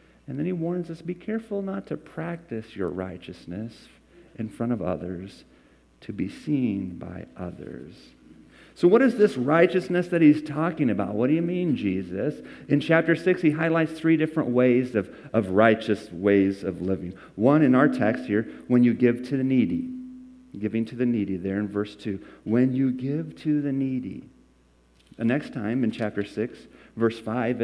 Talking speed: 180 wpm